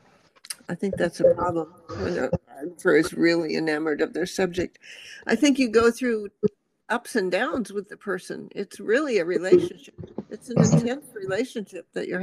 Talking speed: 170 wpm